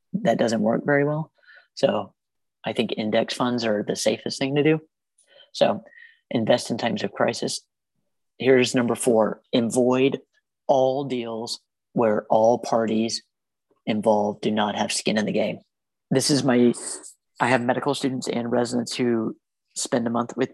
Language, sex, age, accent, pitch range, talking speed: English, male, 30-49, American, 110-135 Hz, 155 wpm